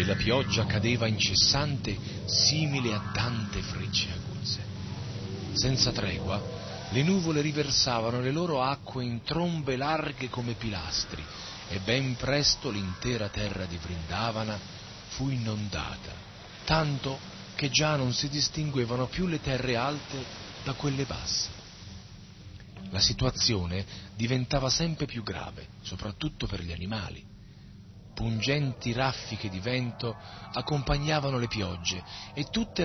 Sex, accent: male, native